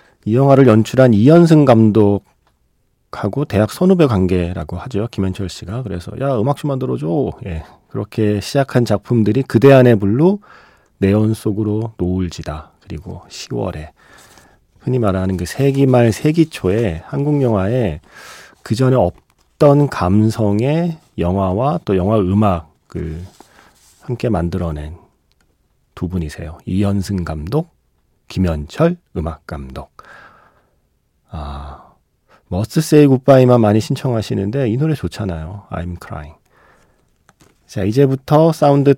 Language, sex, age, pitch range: Korean, male, 40-59, 90-135 Hz